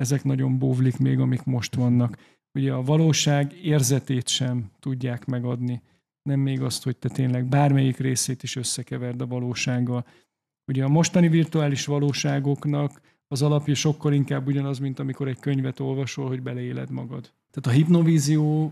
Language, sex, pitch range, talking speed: Hungarian, male, 130-145 Hz, 150 wpm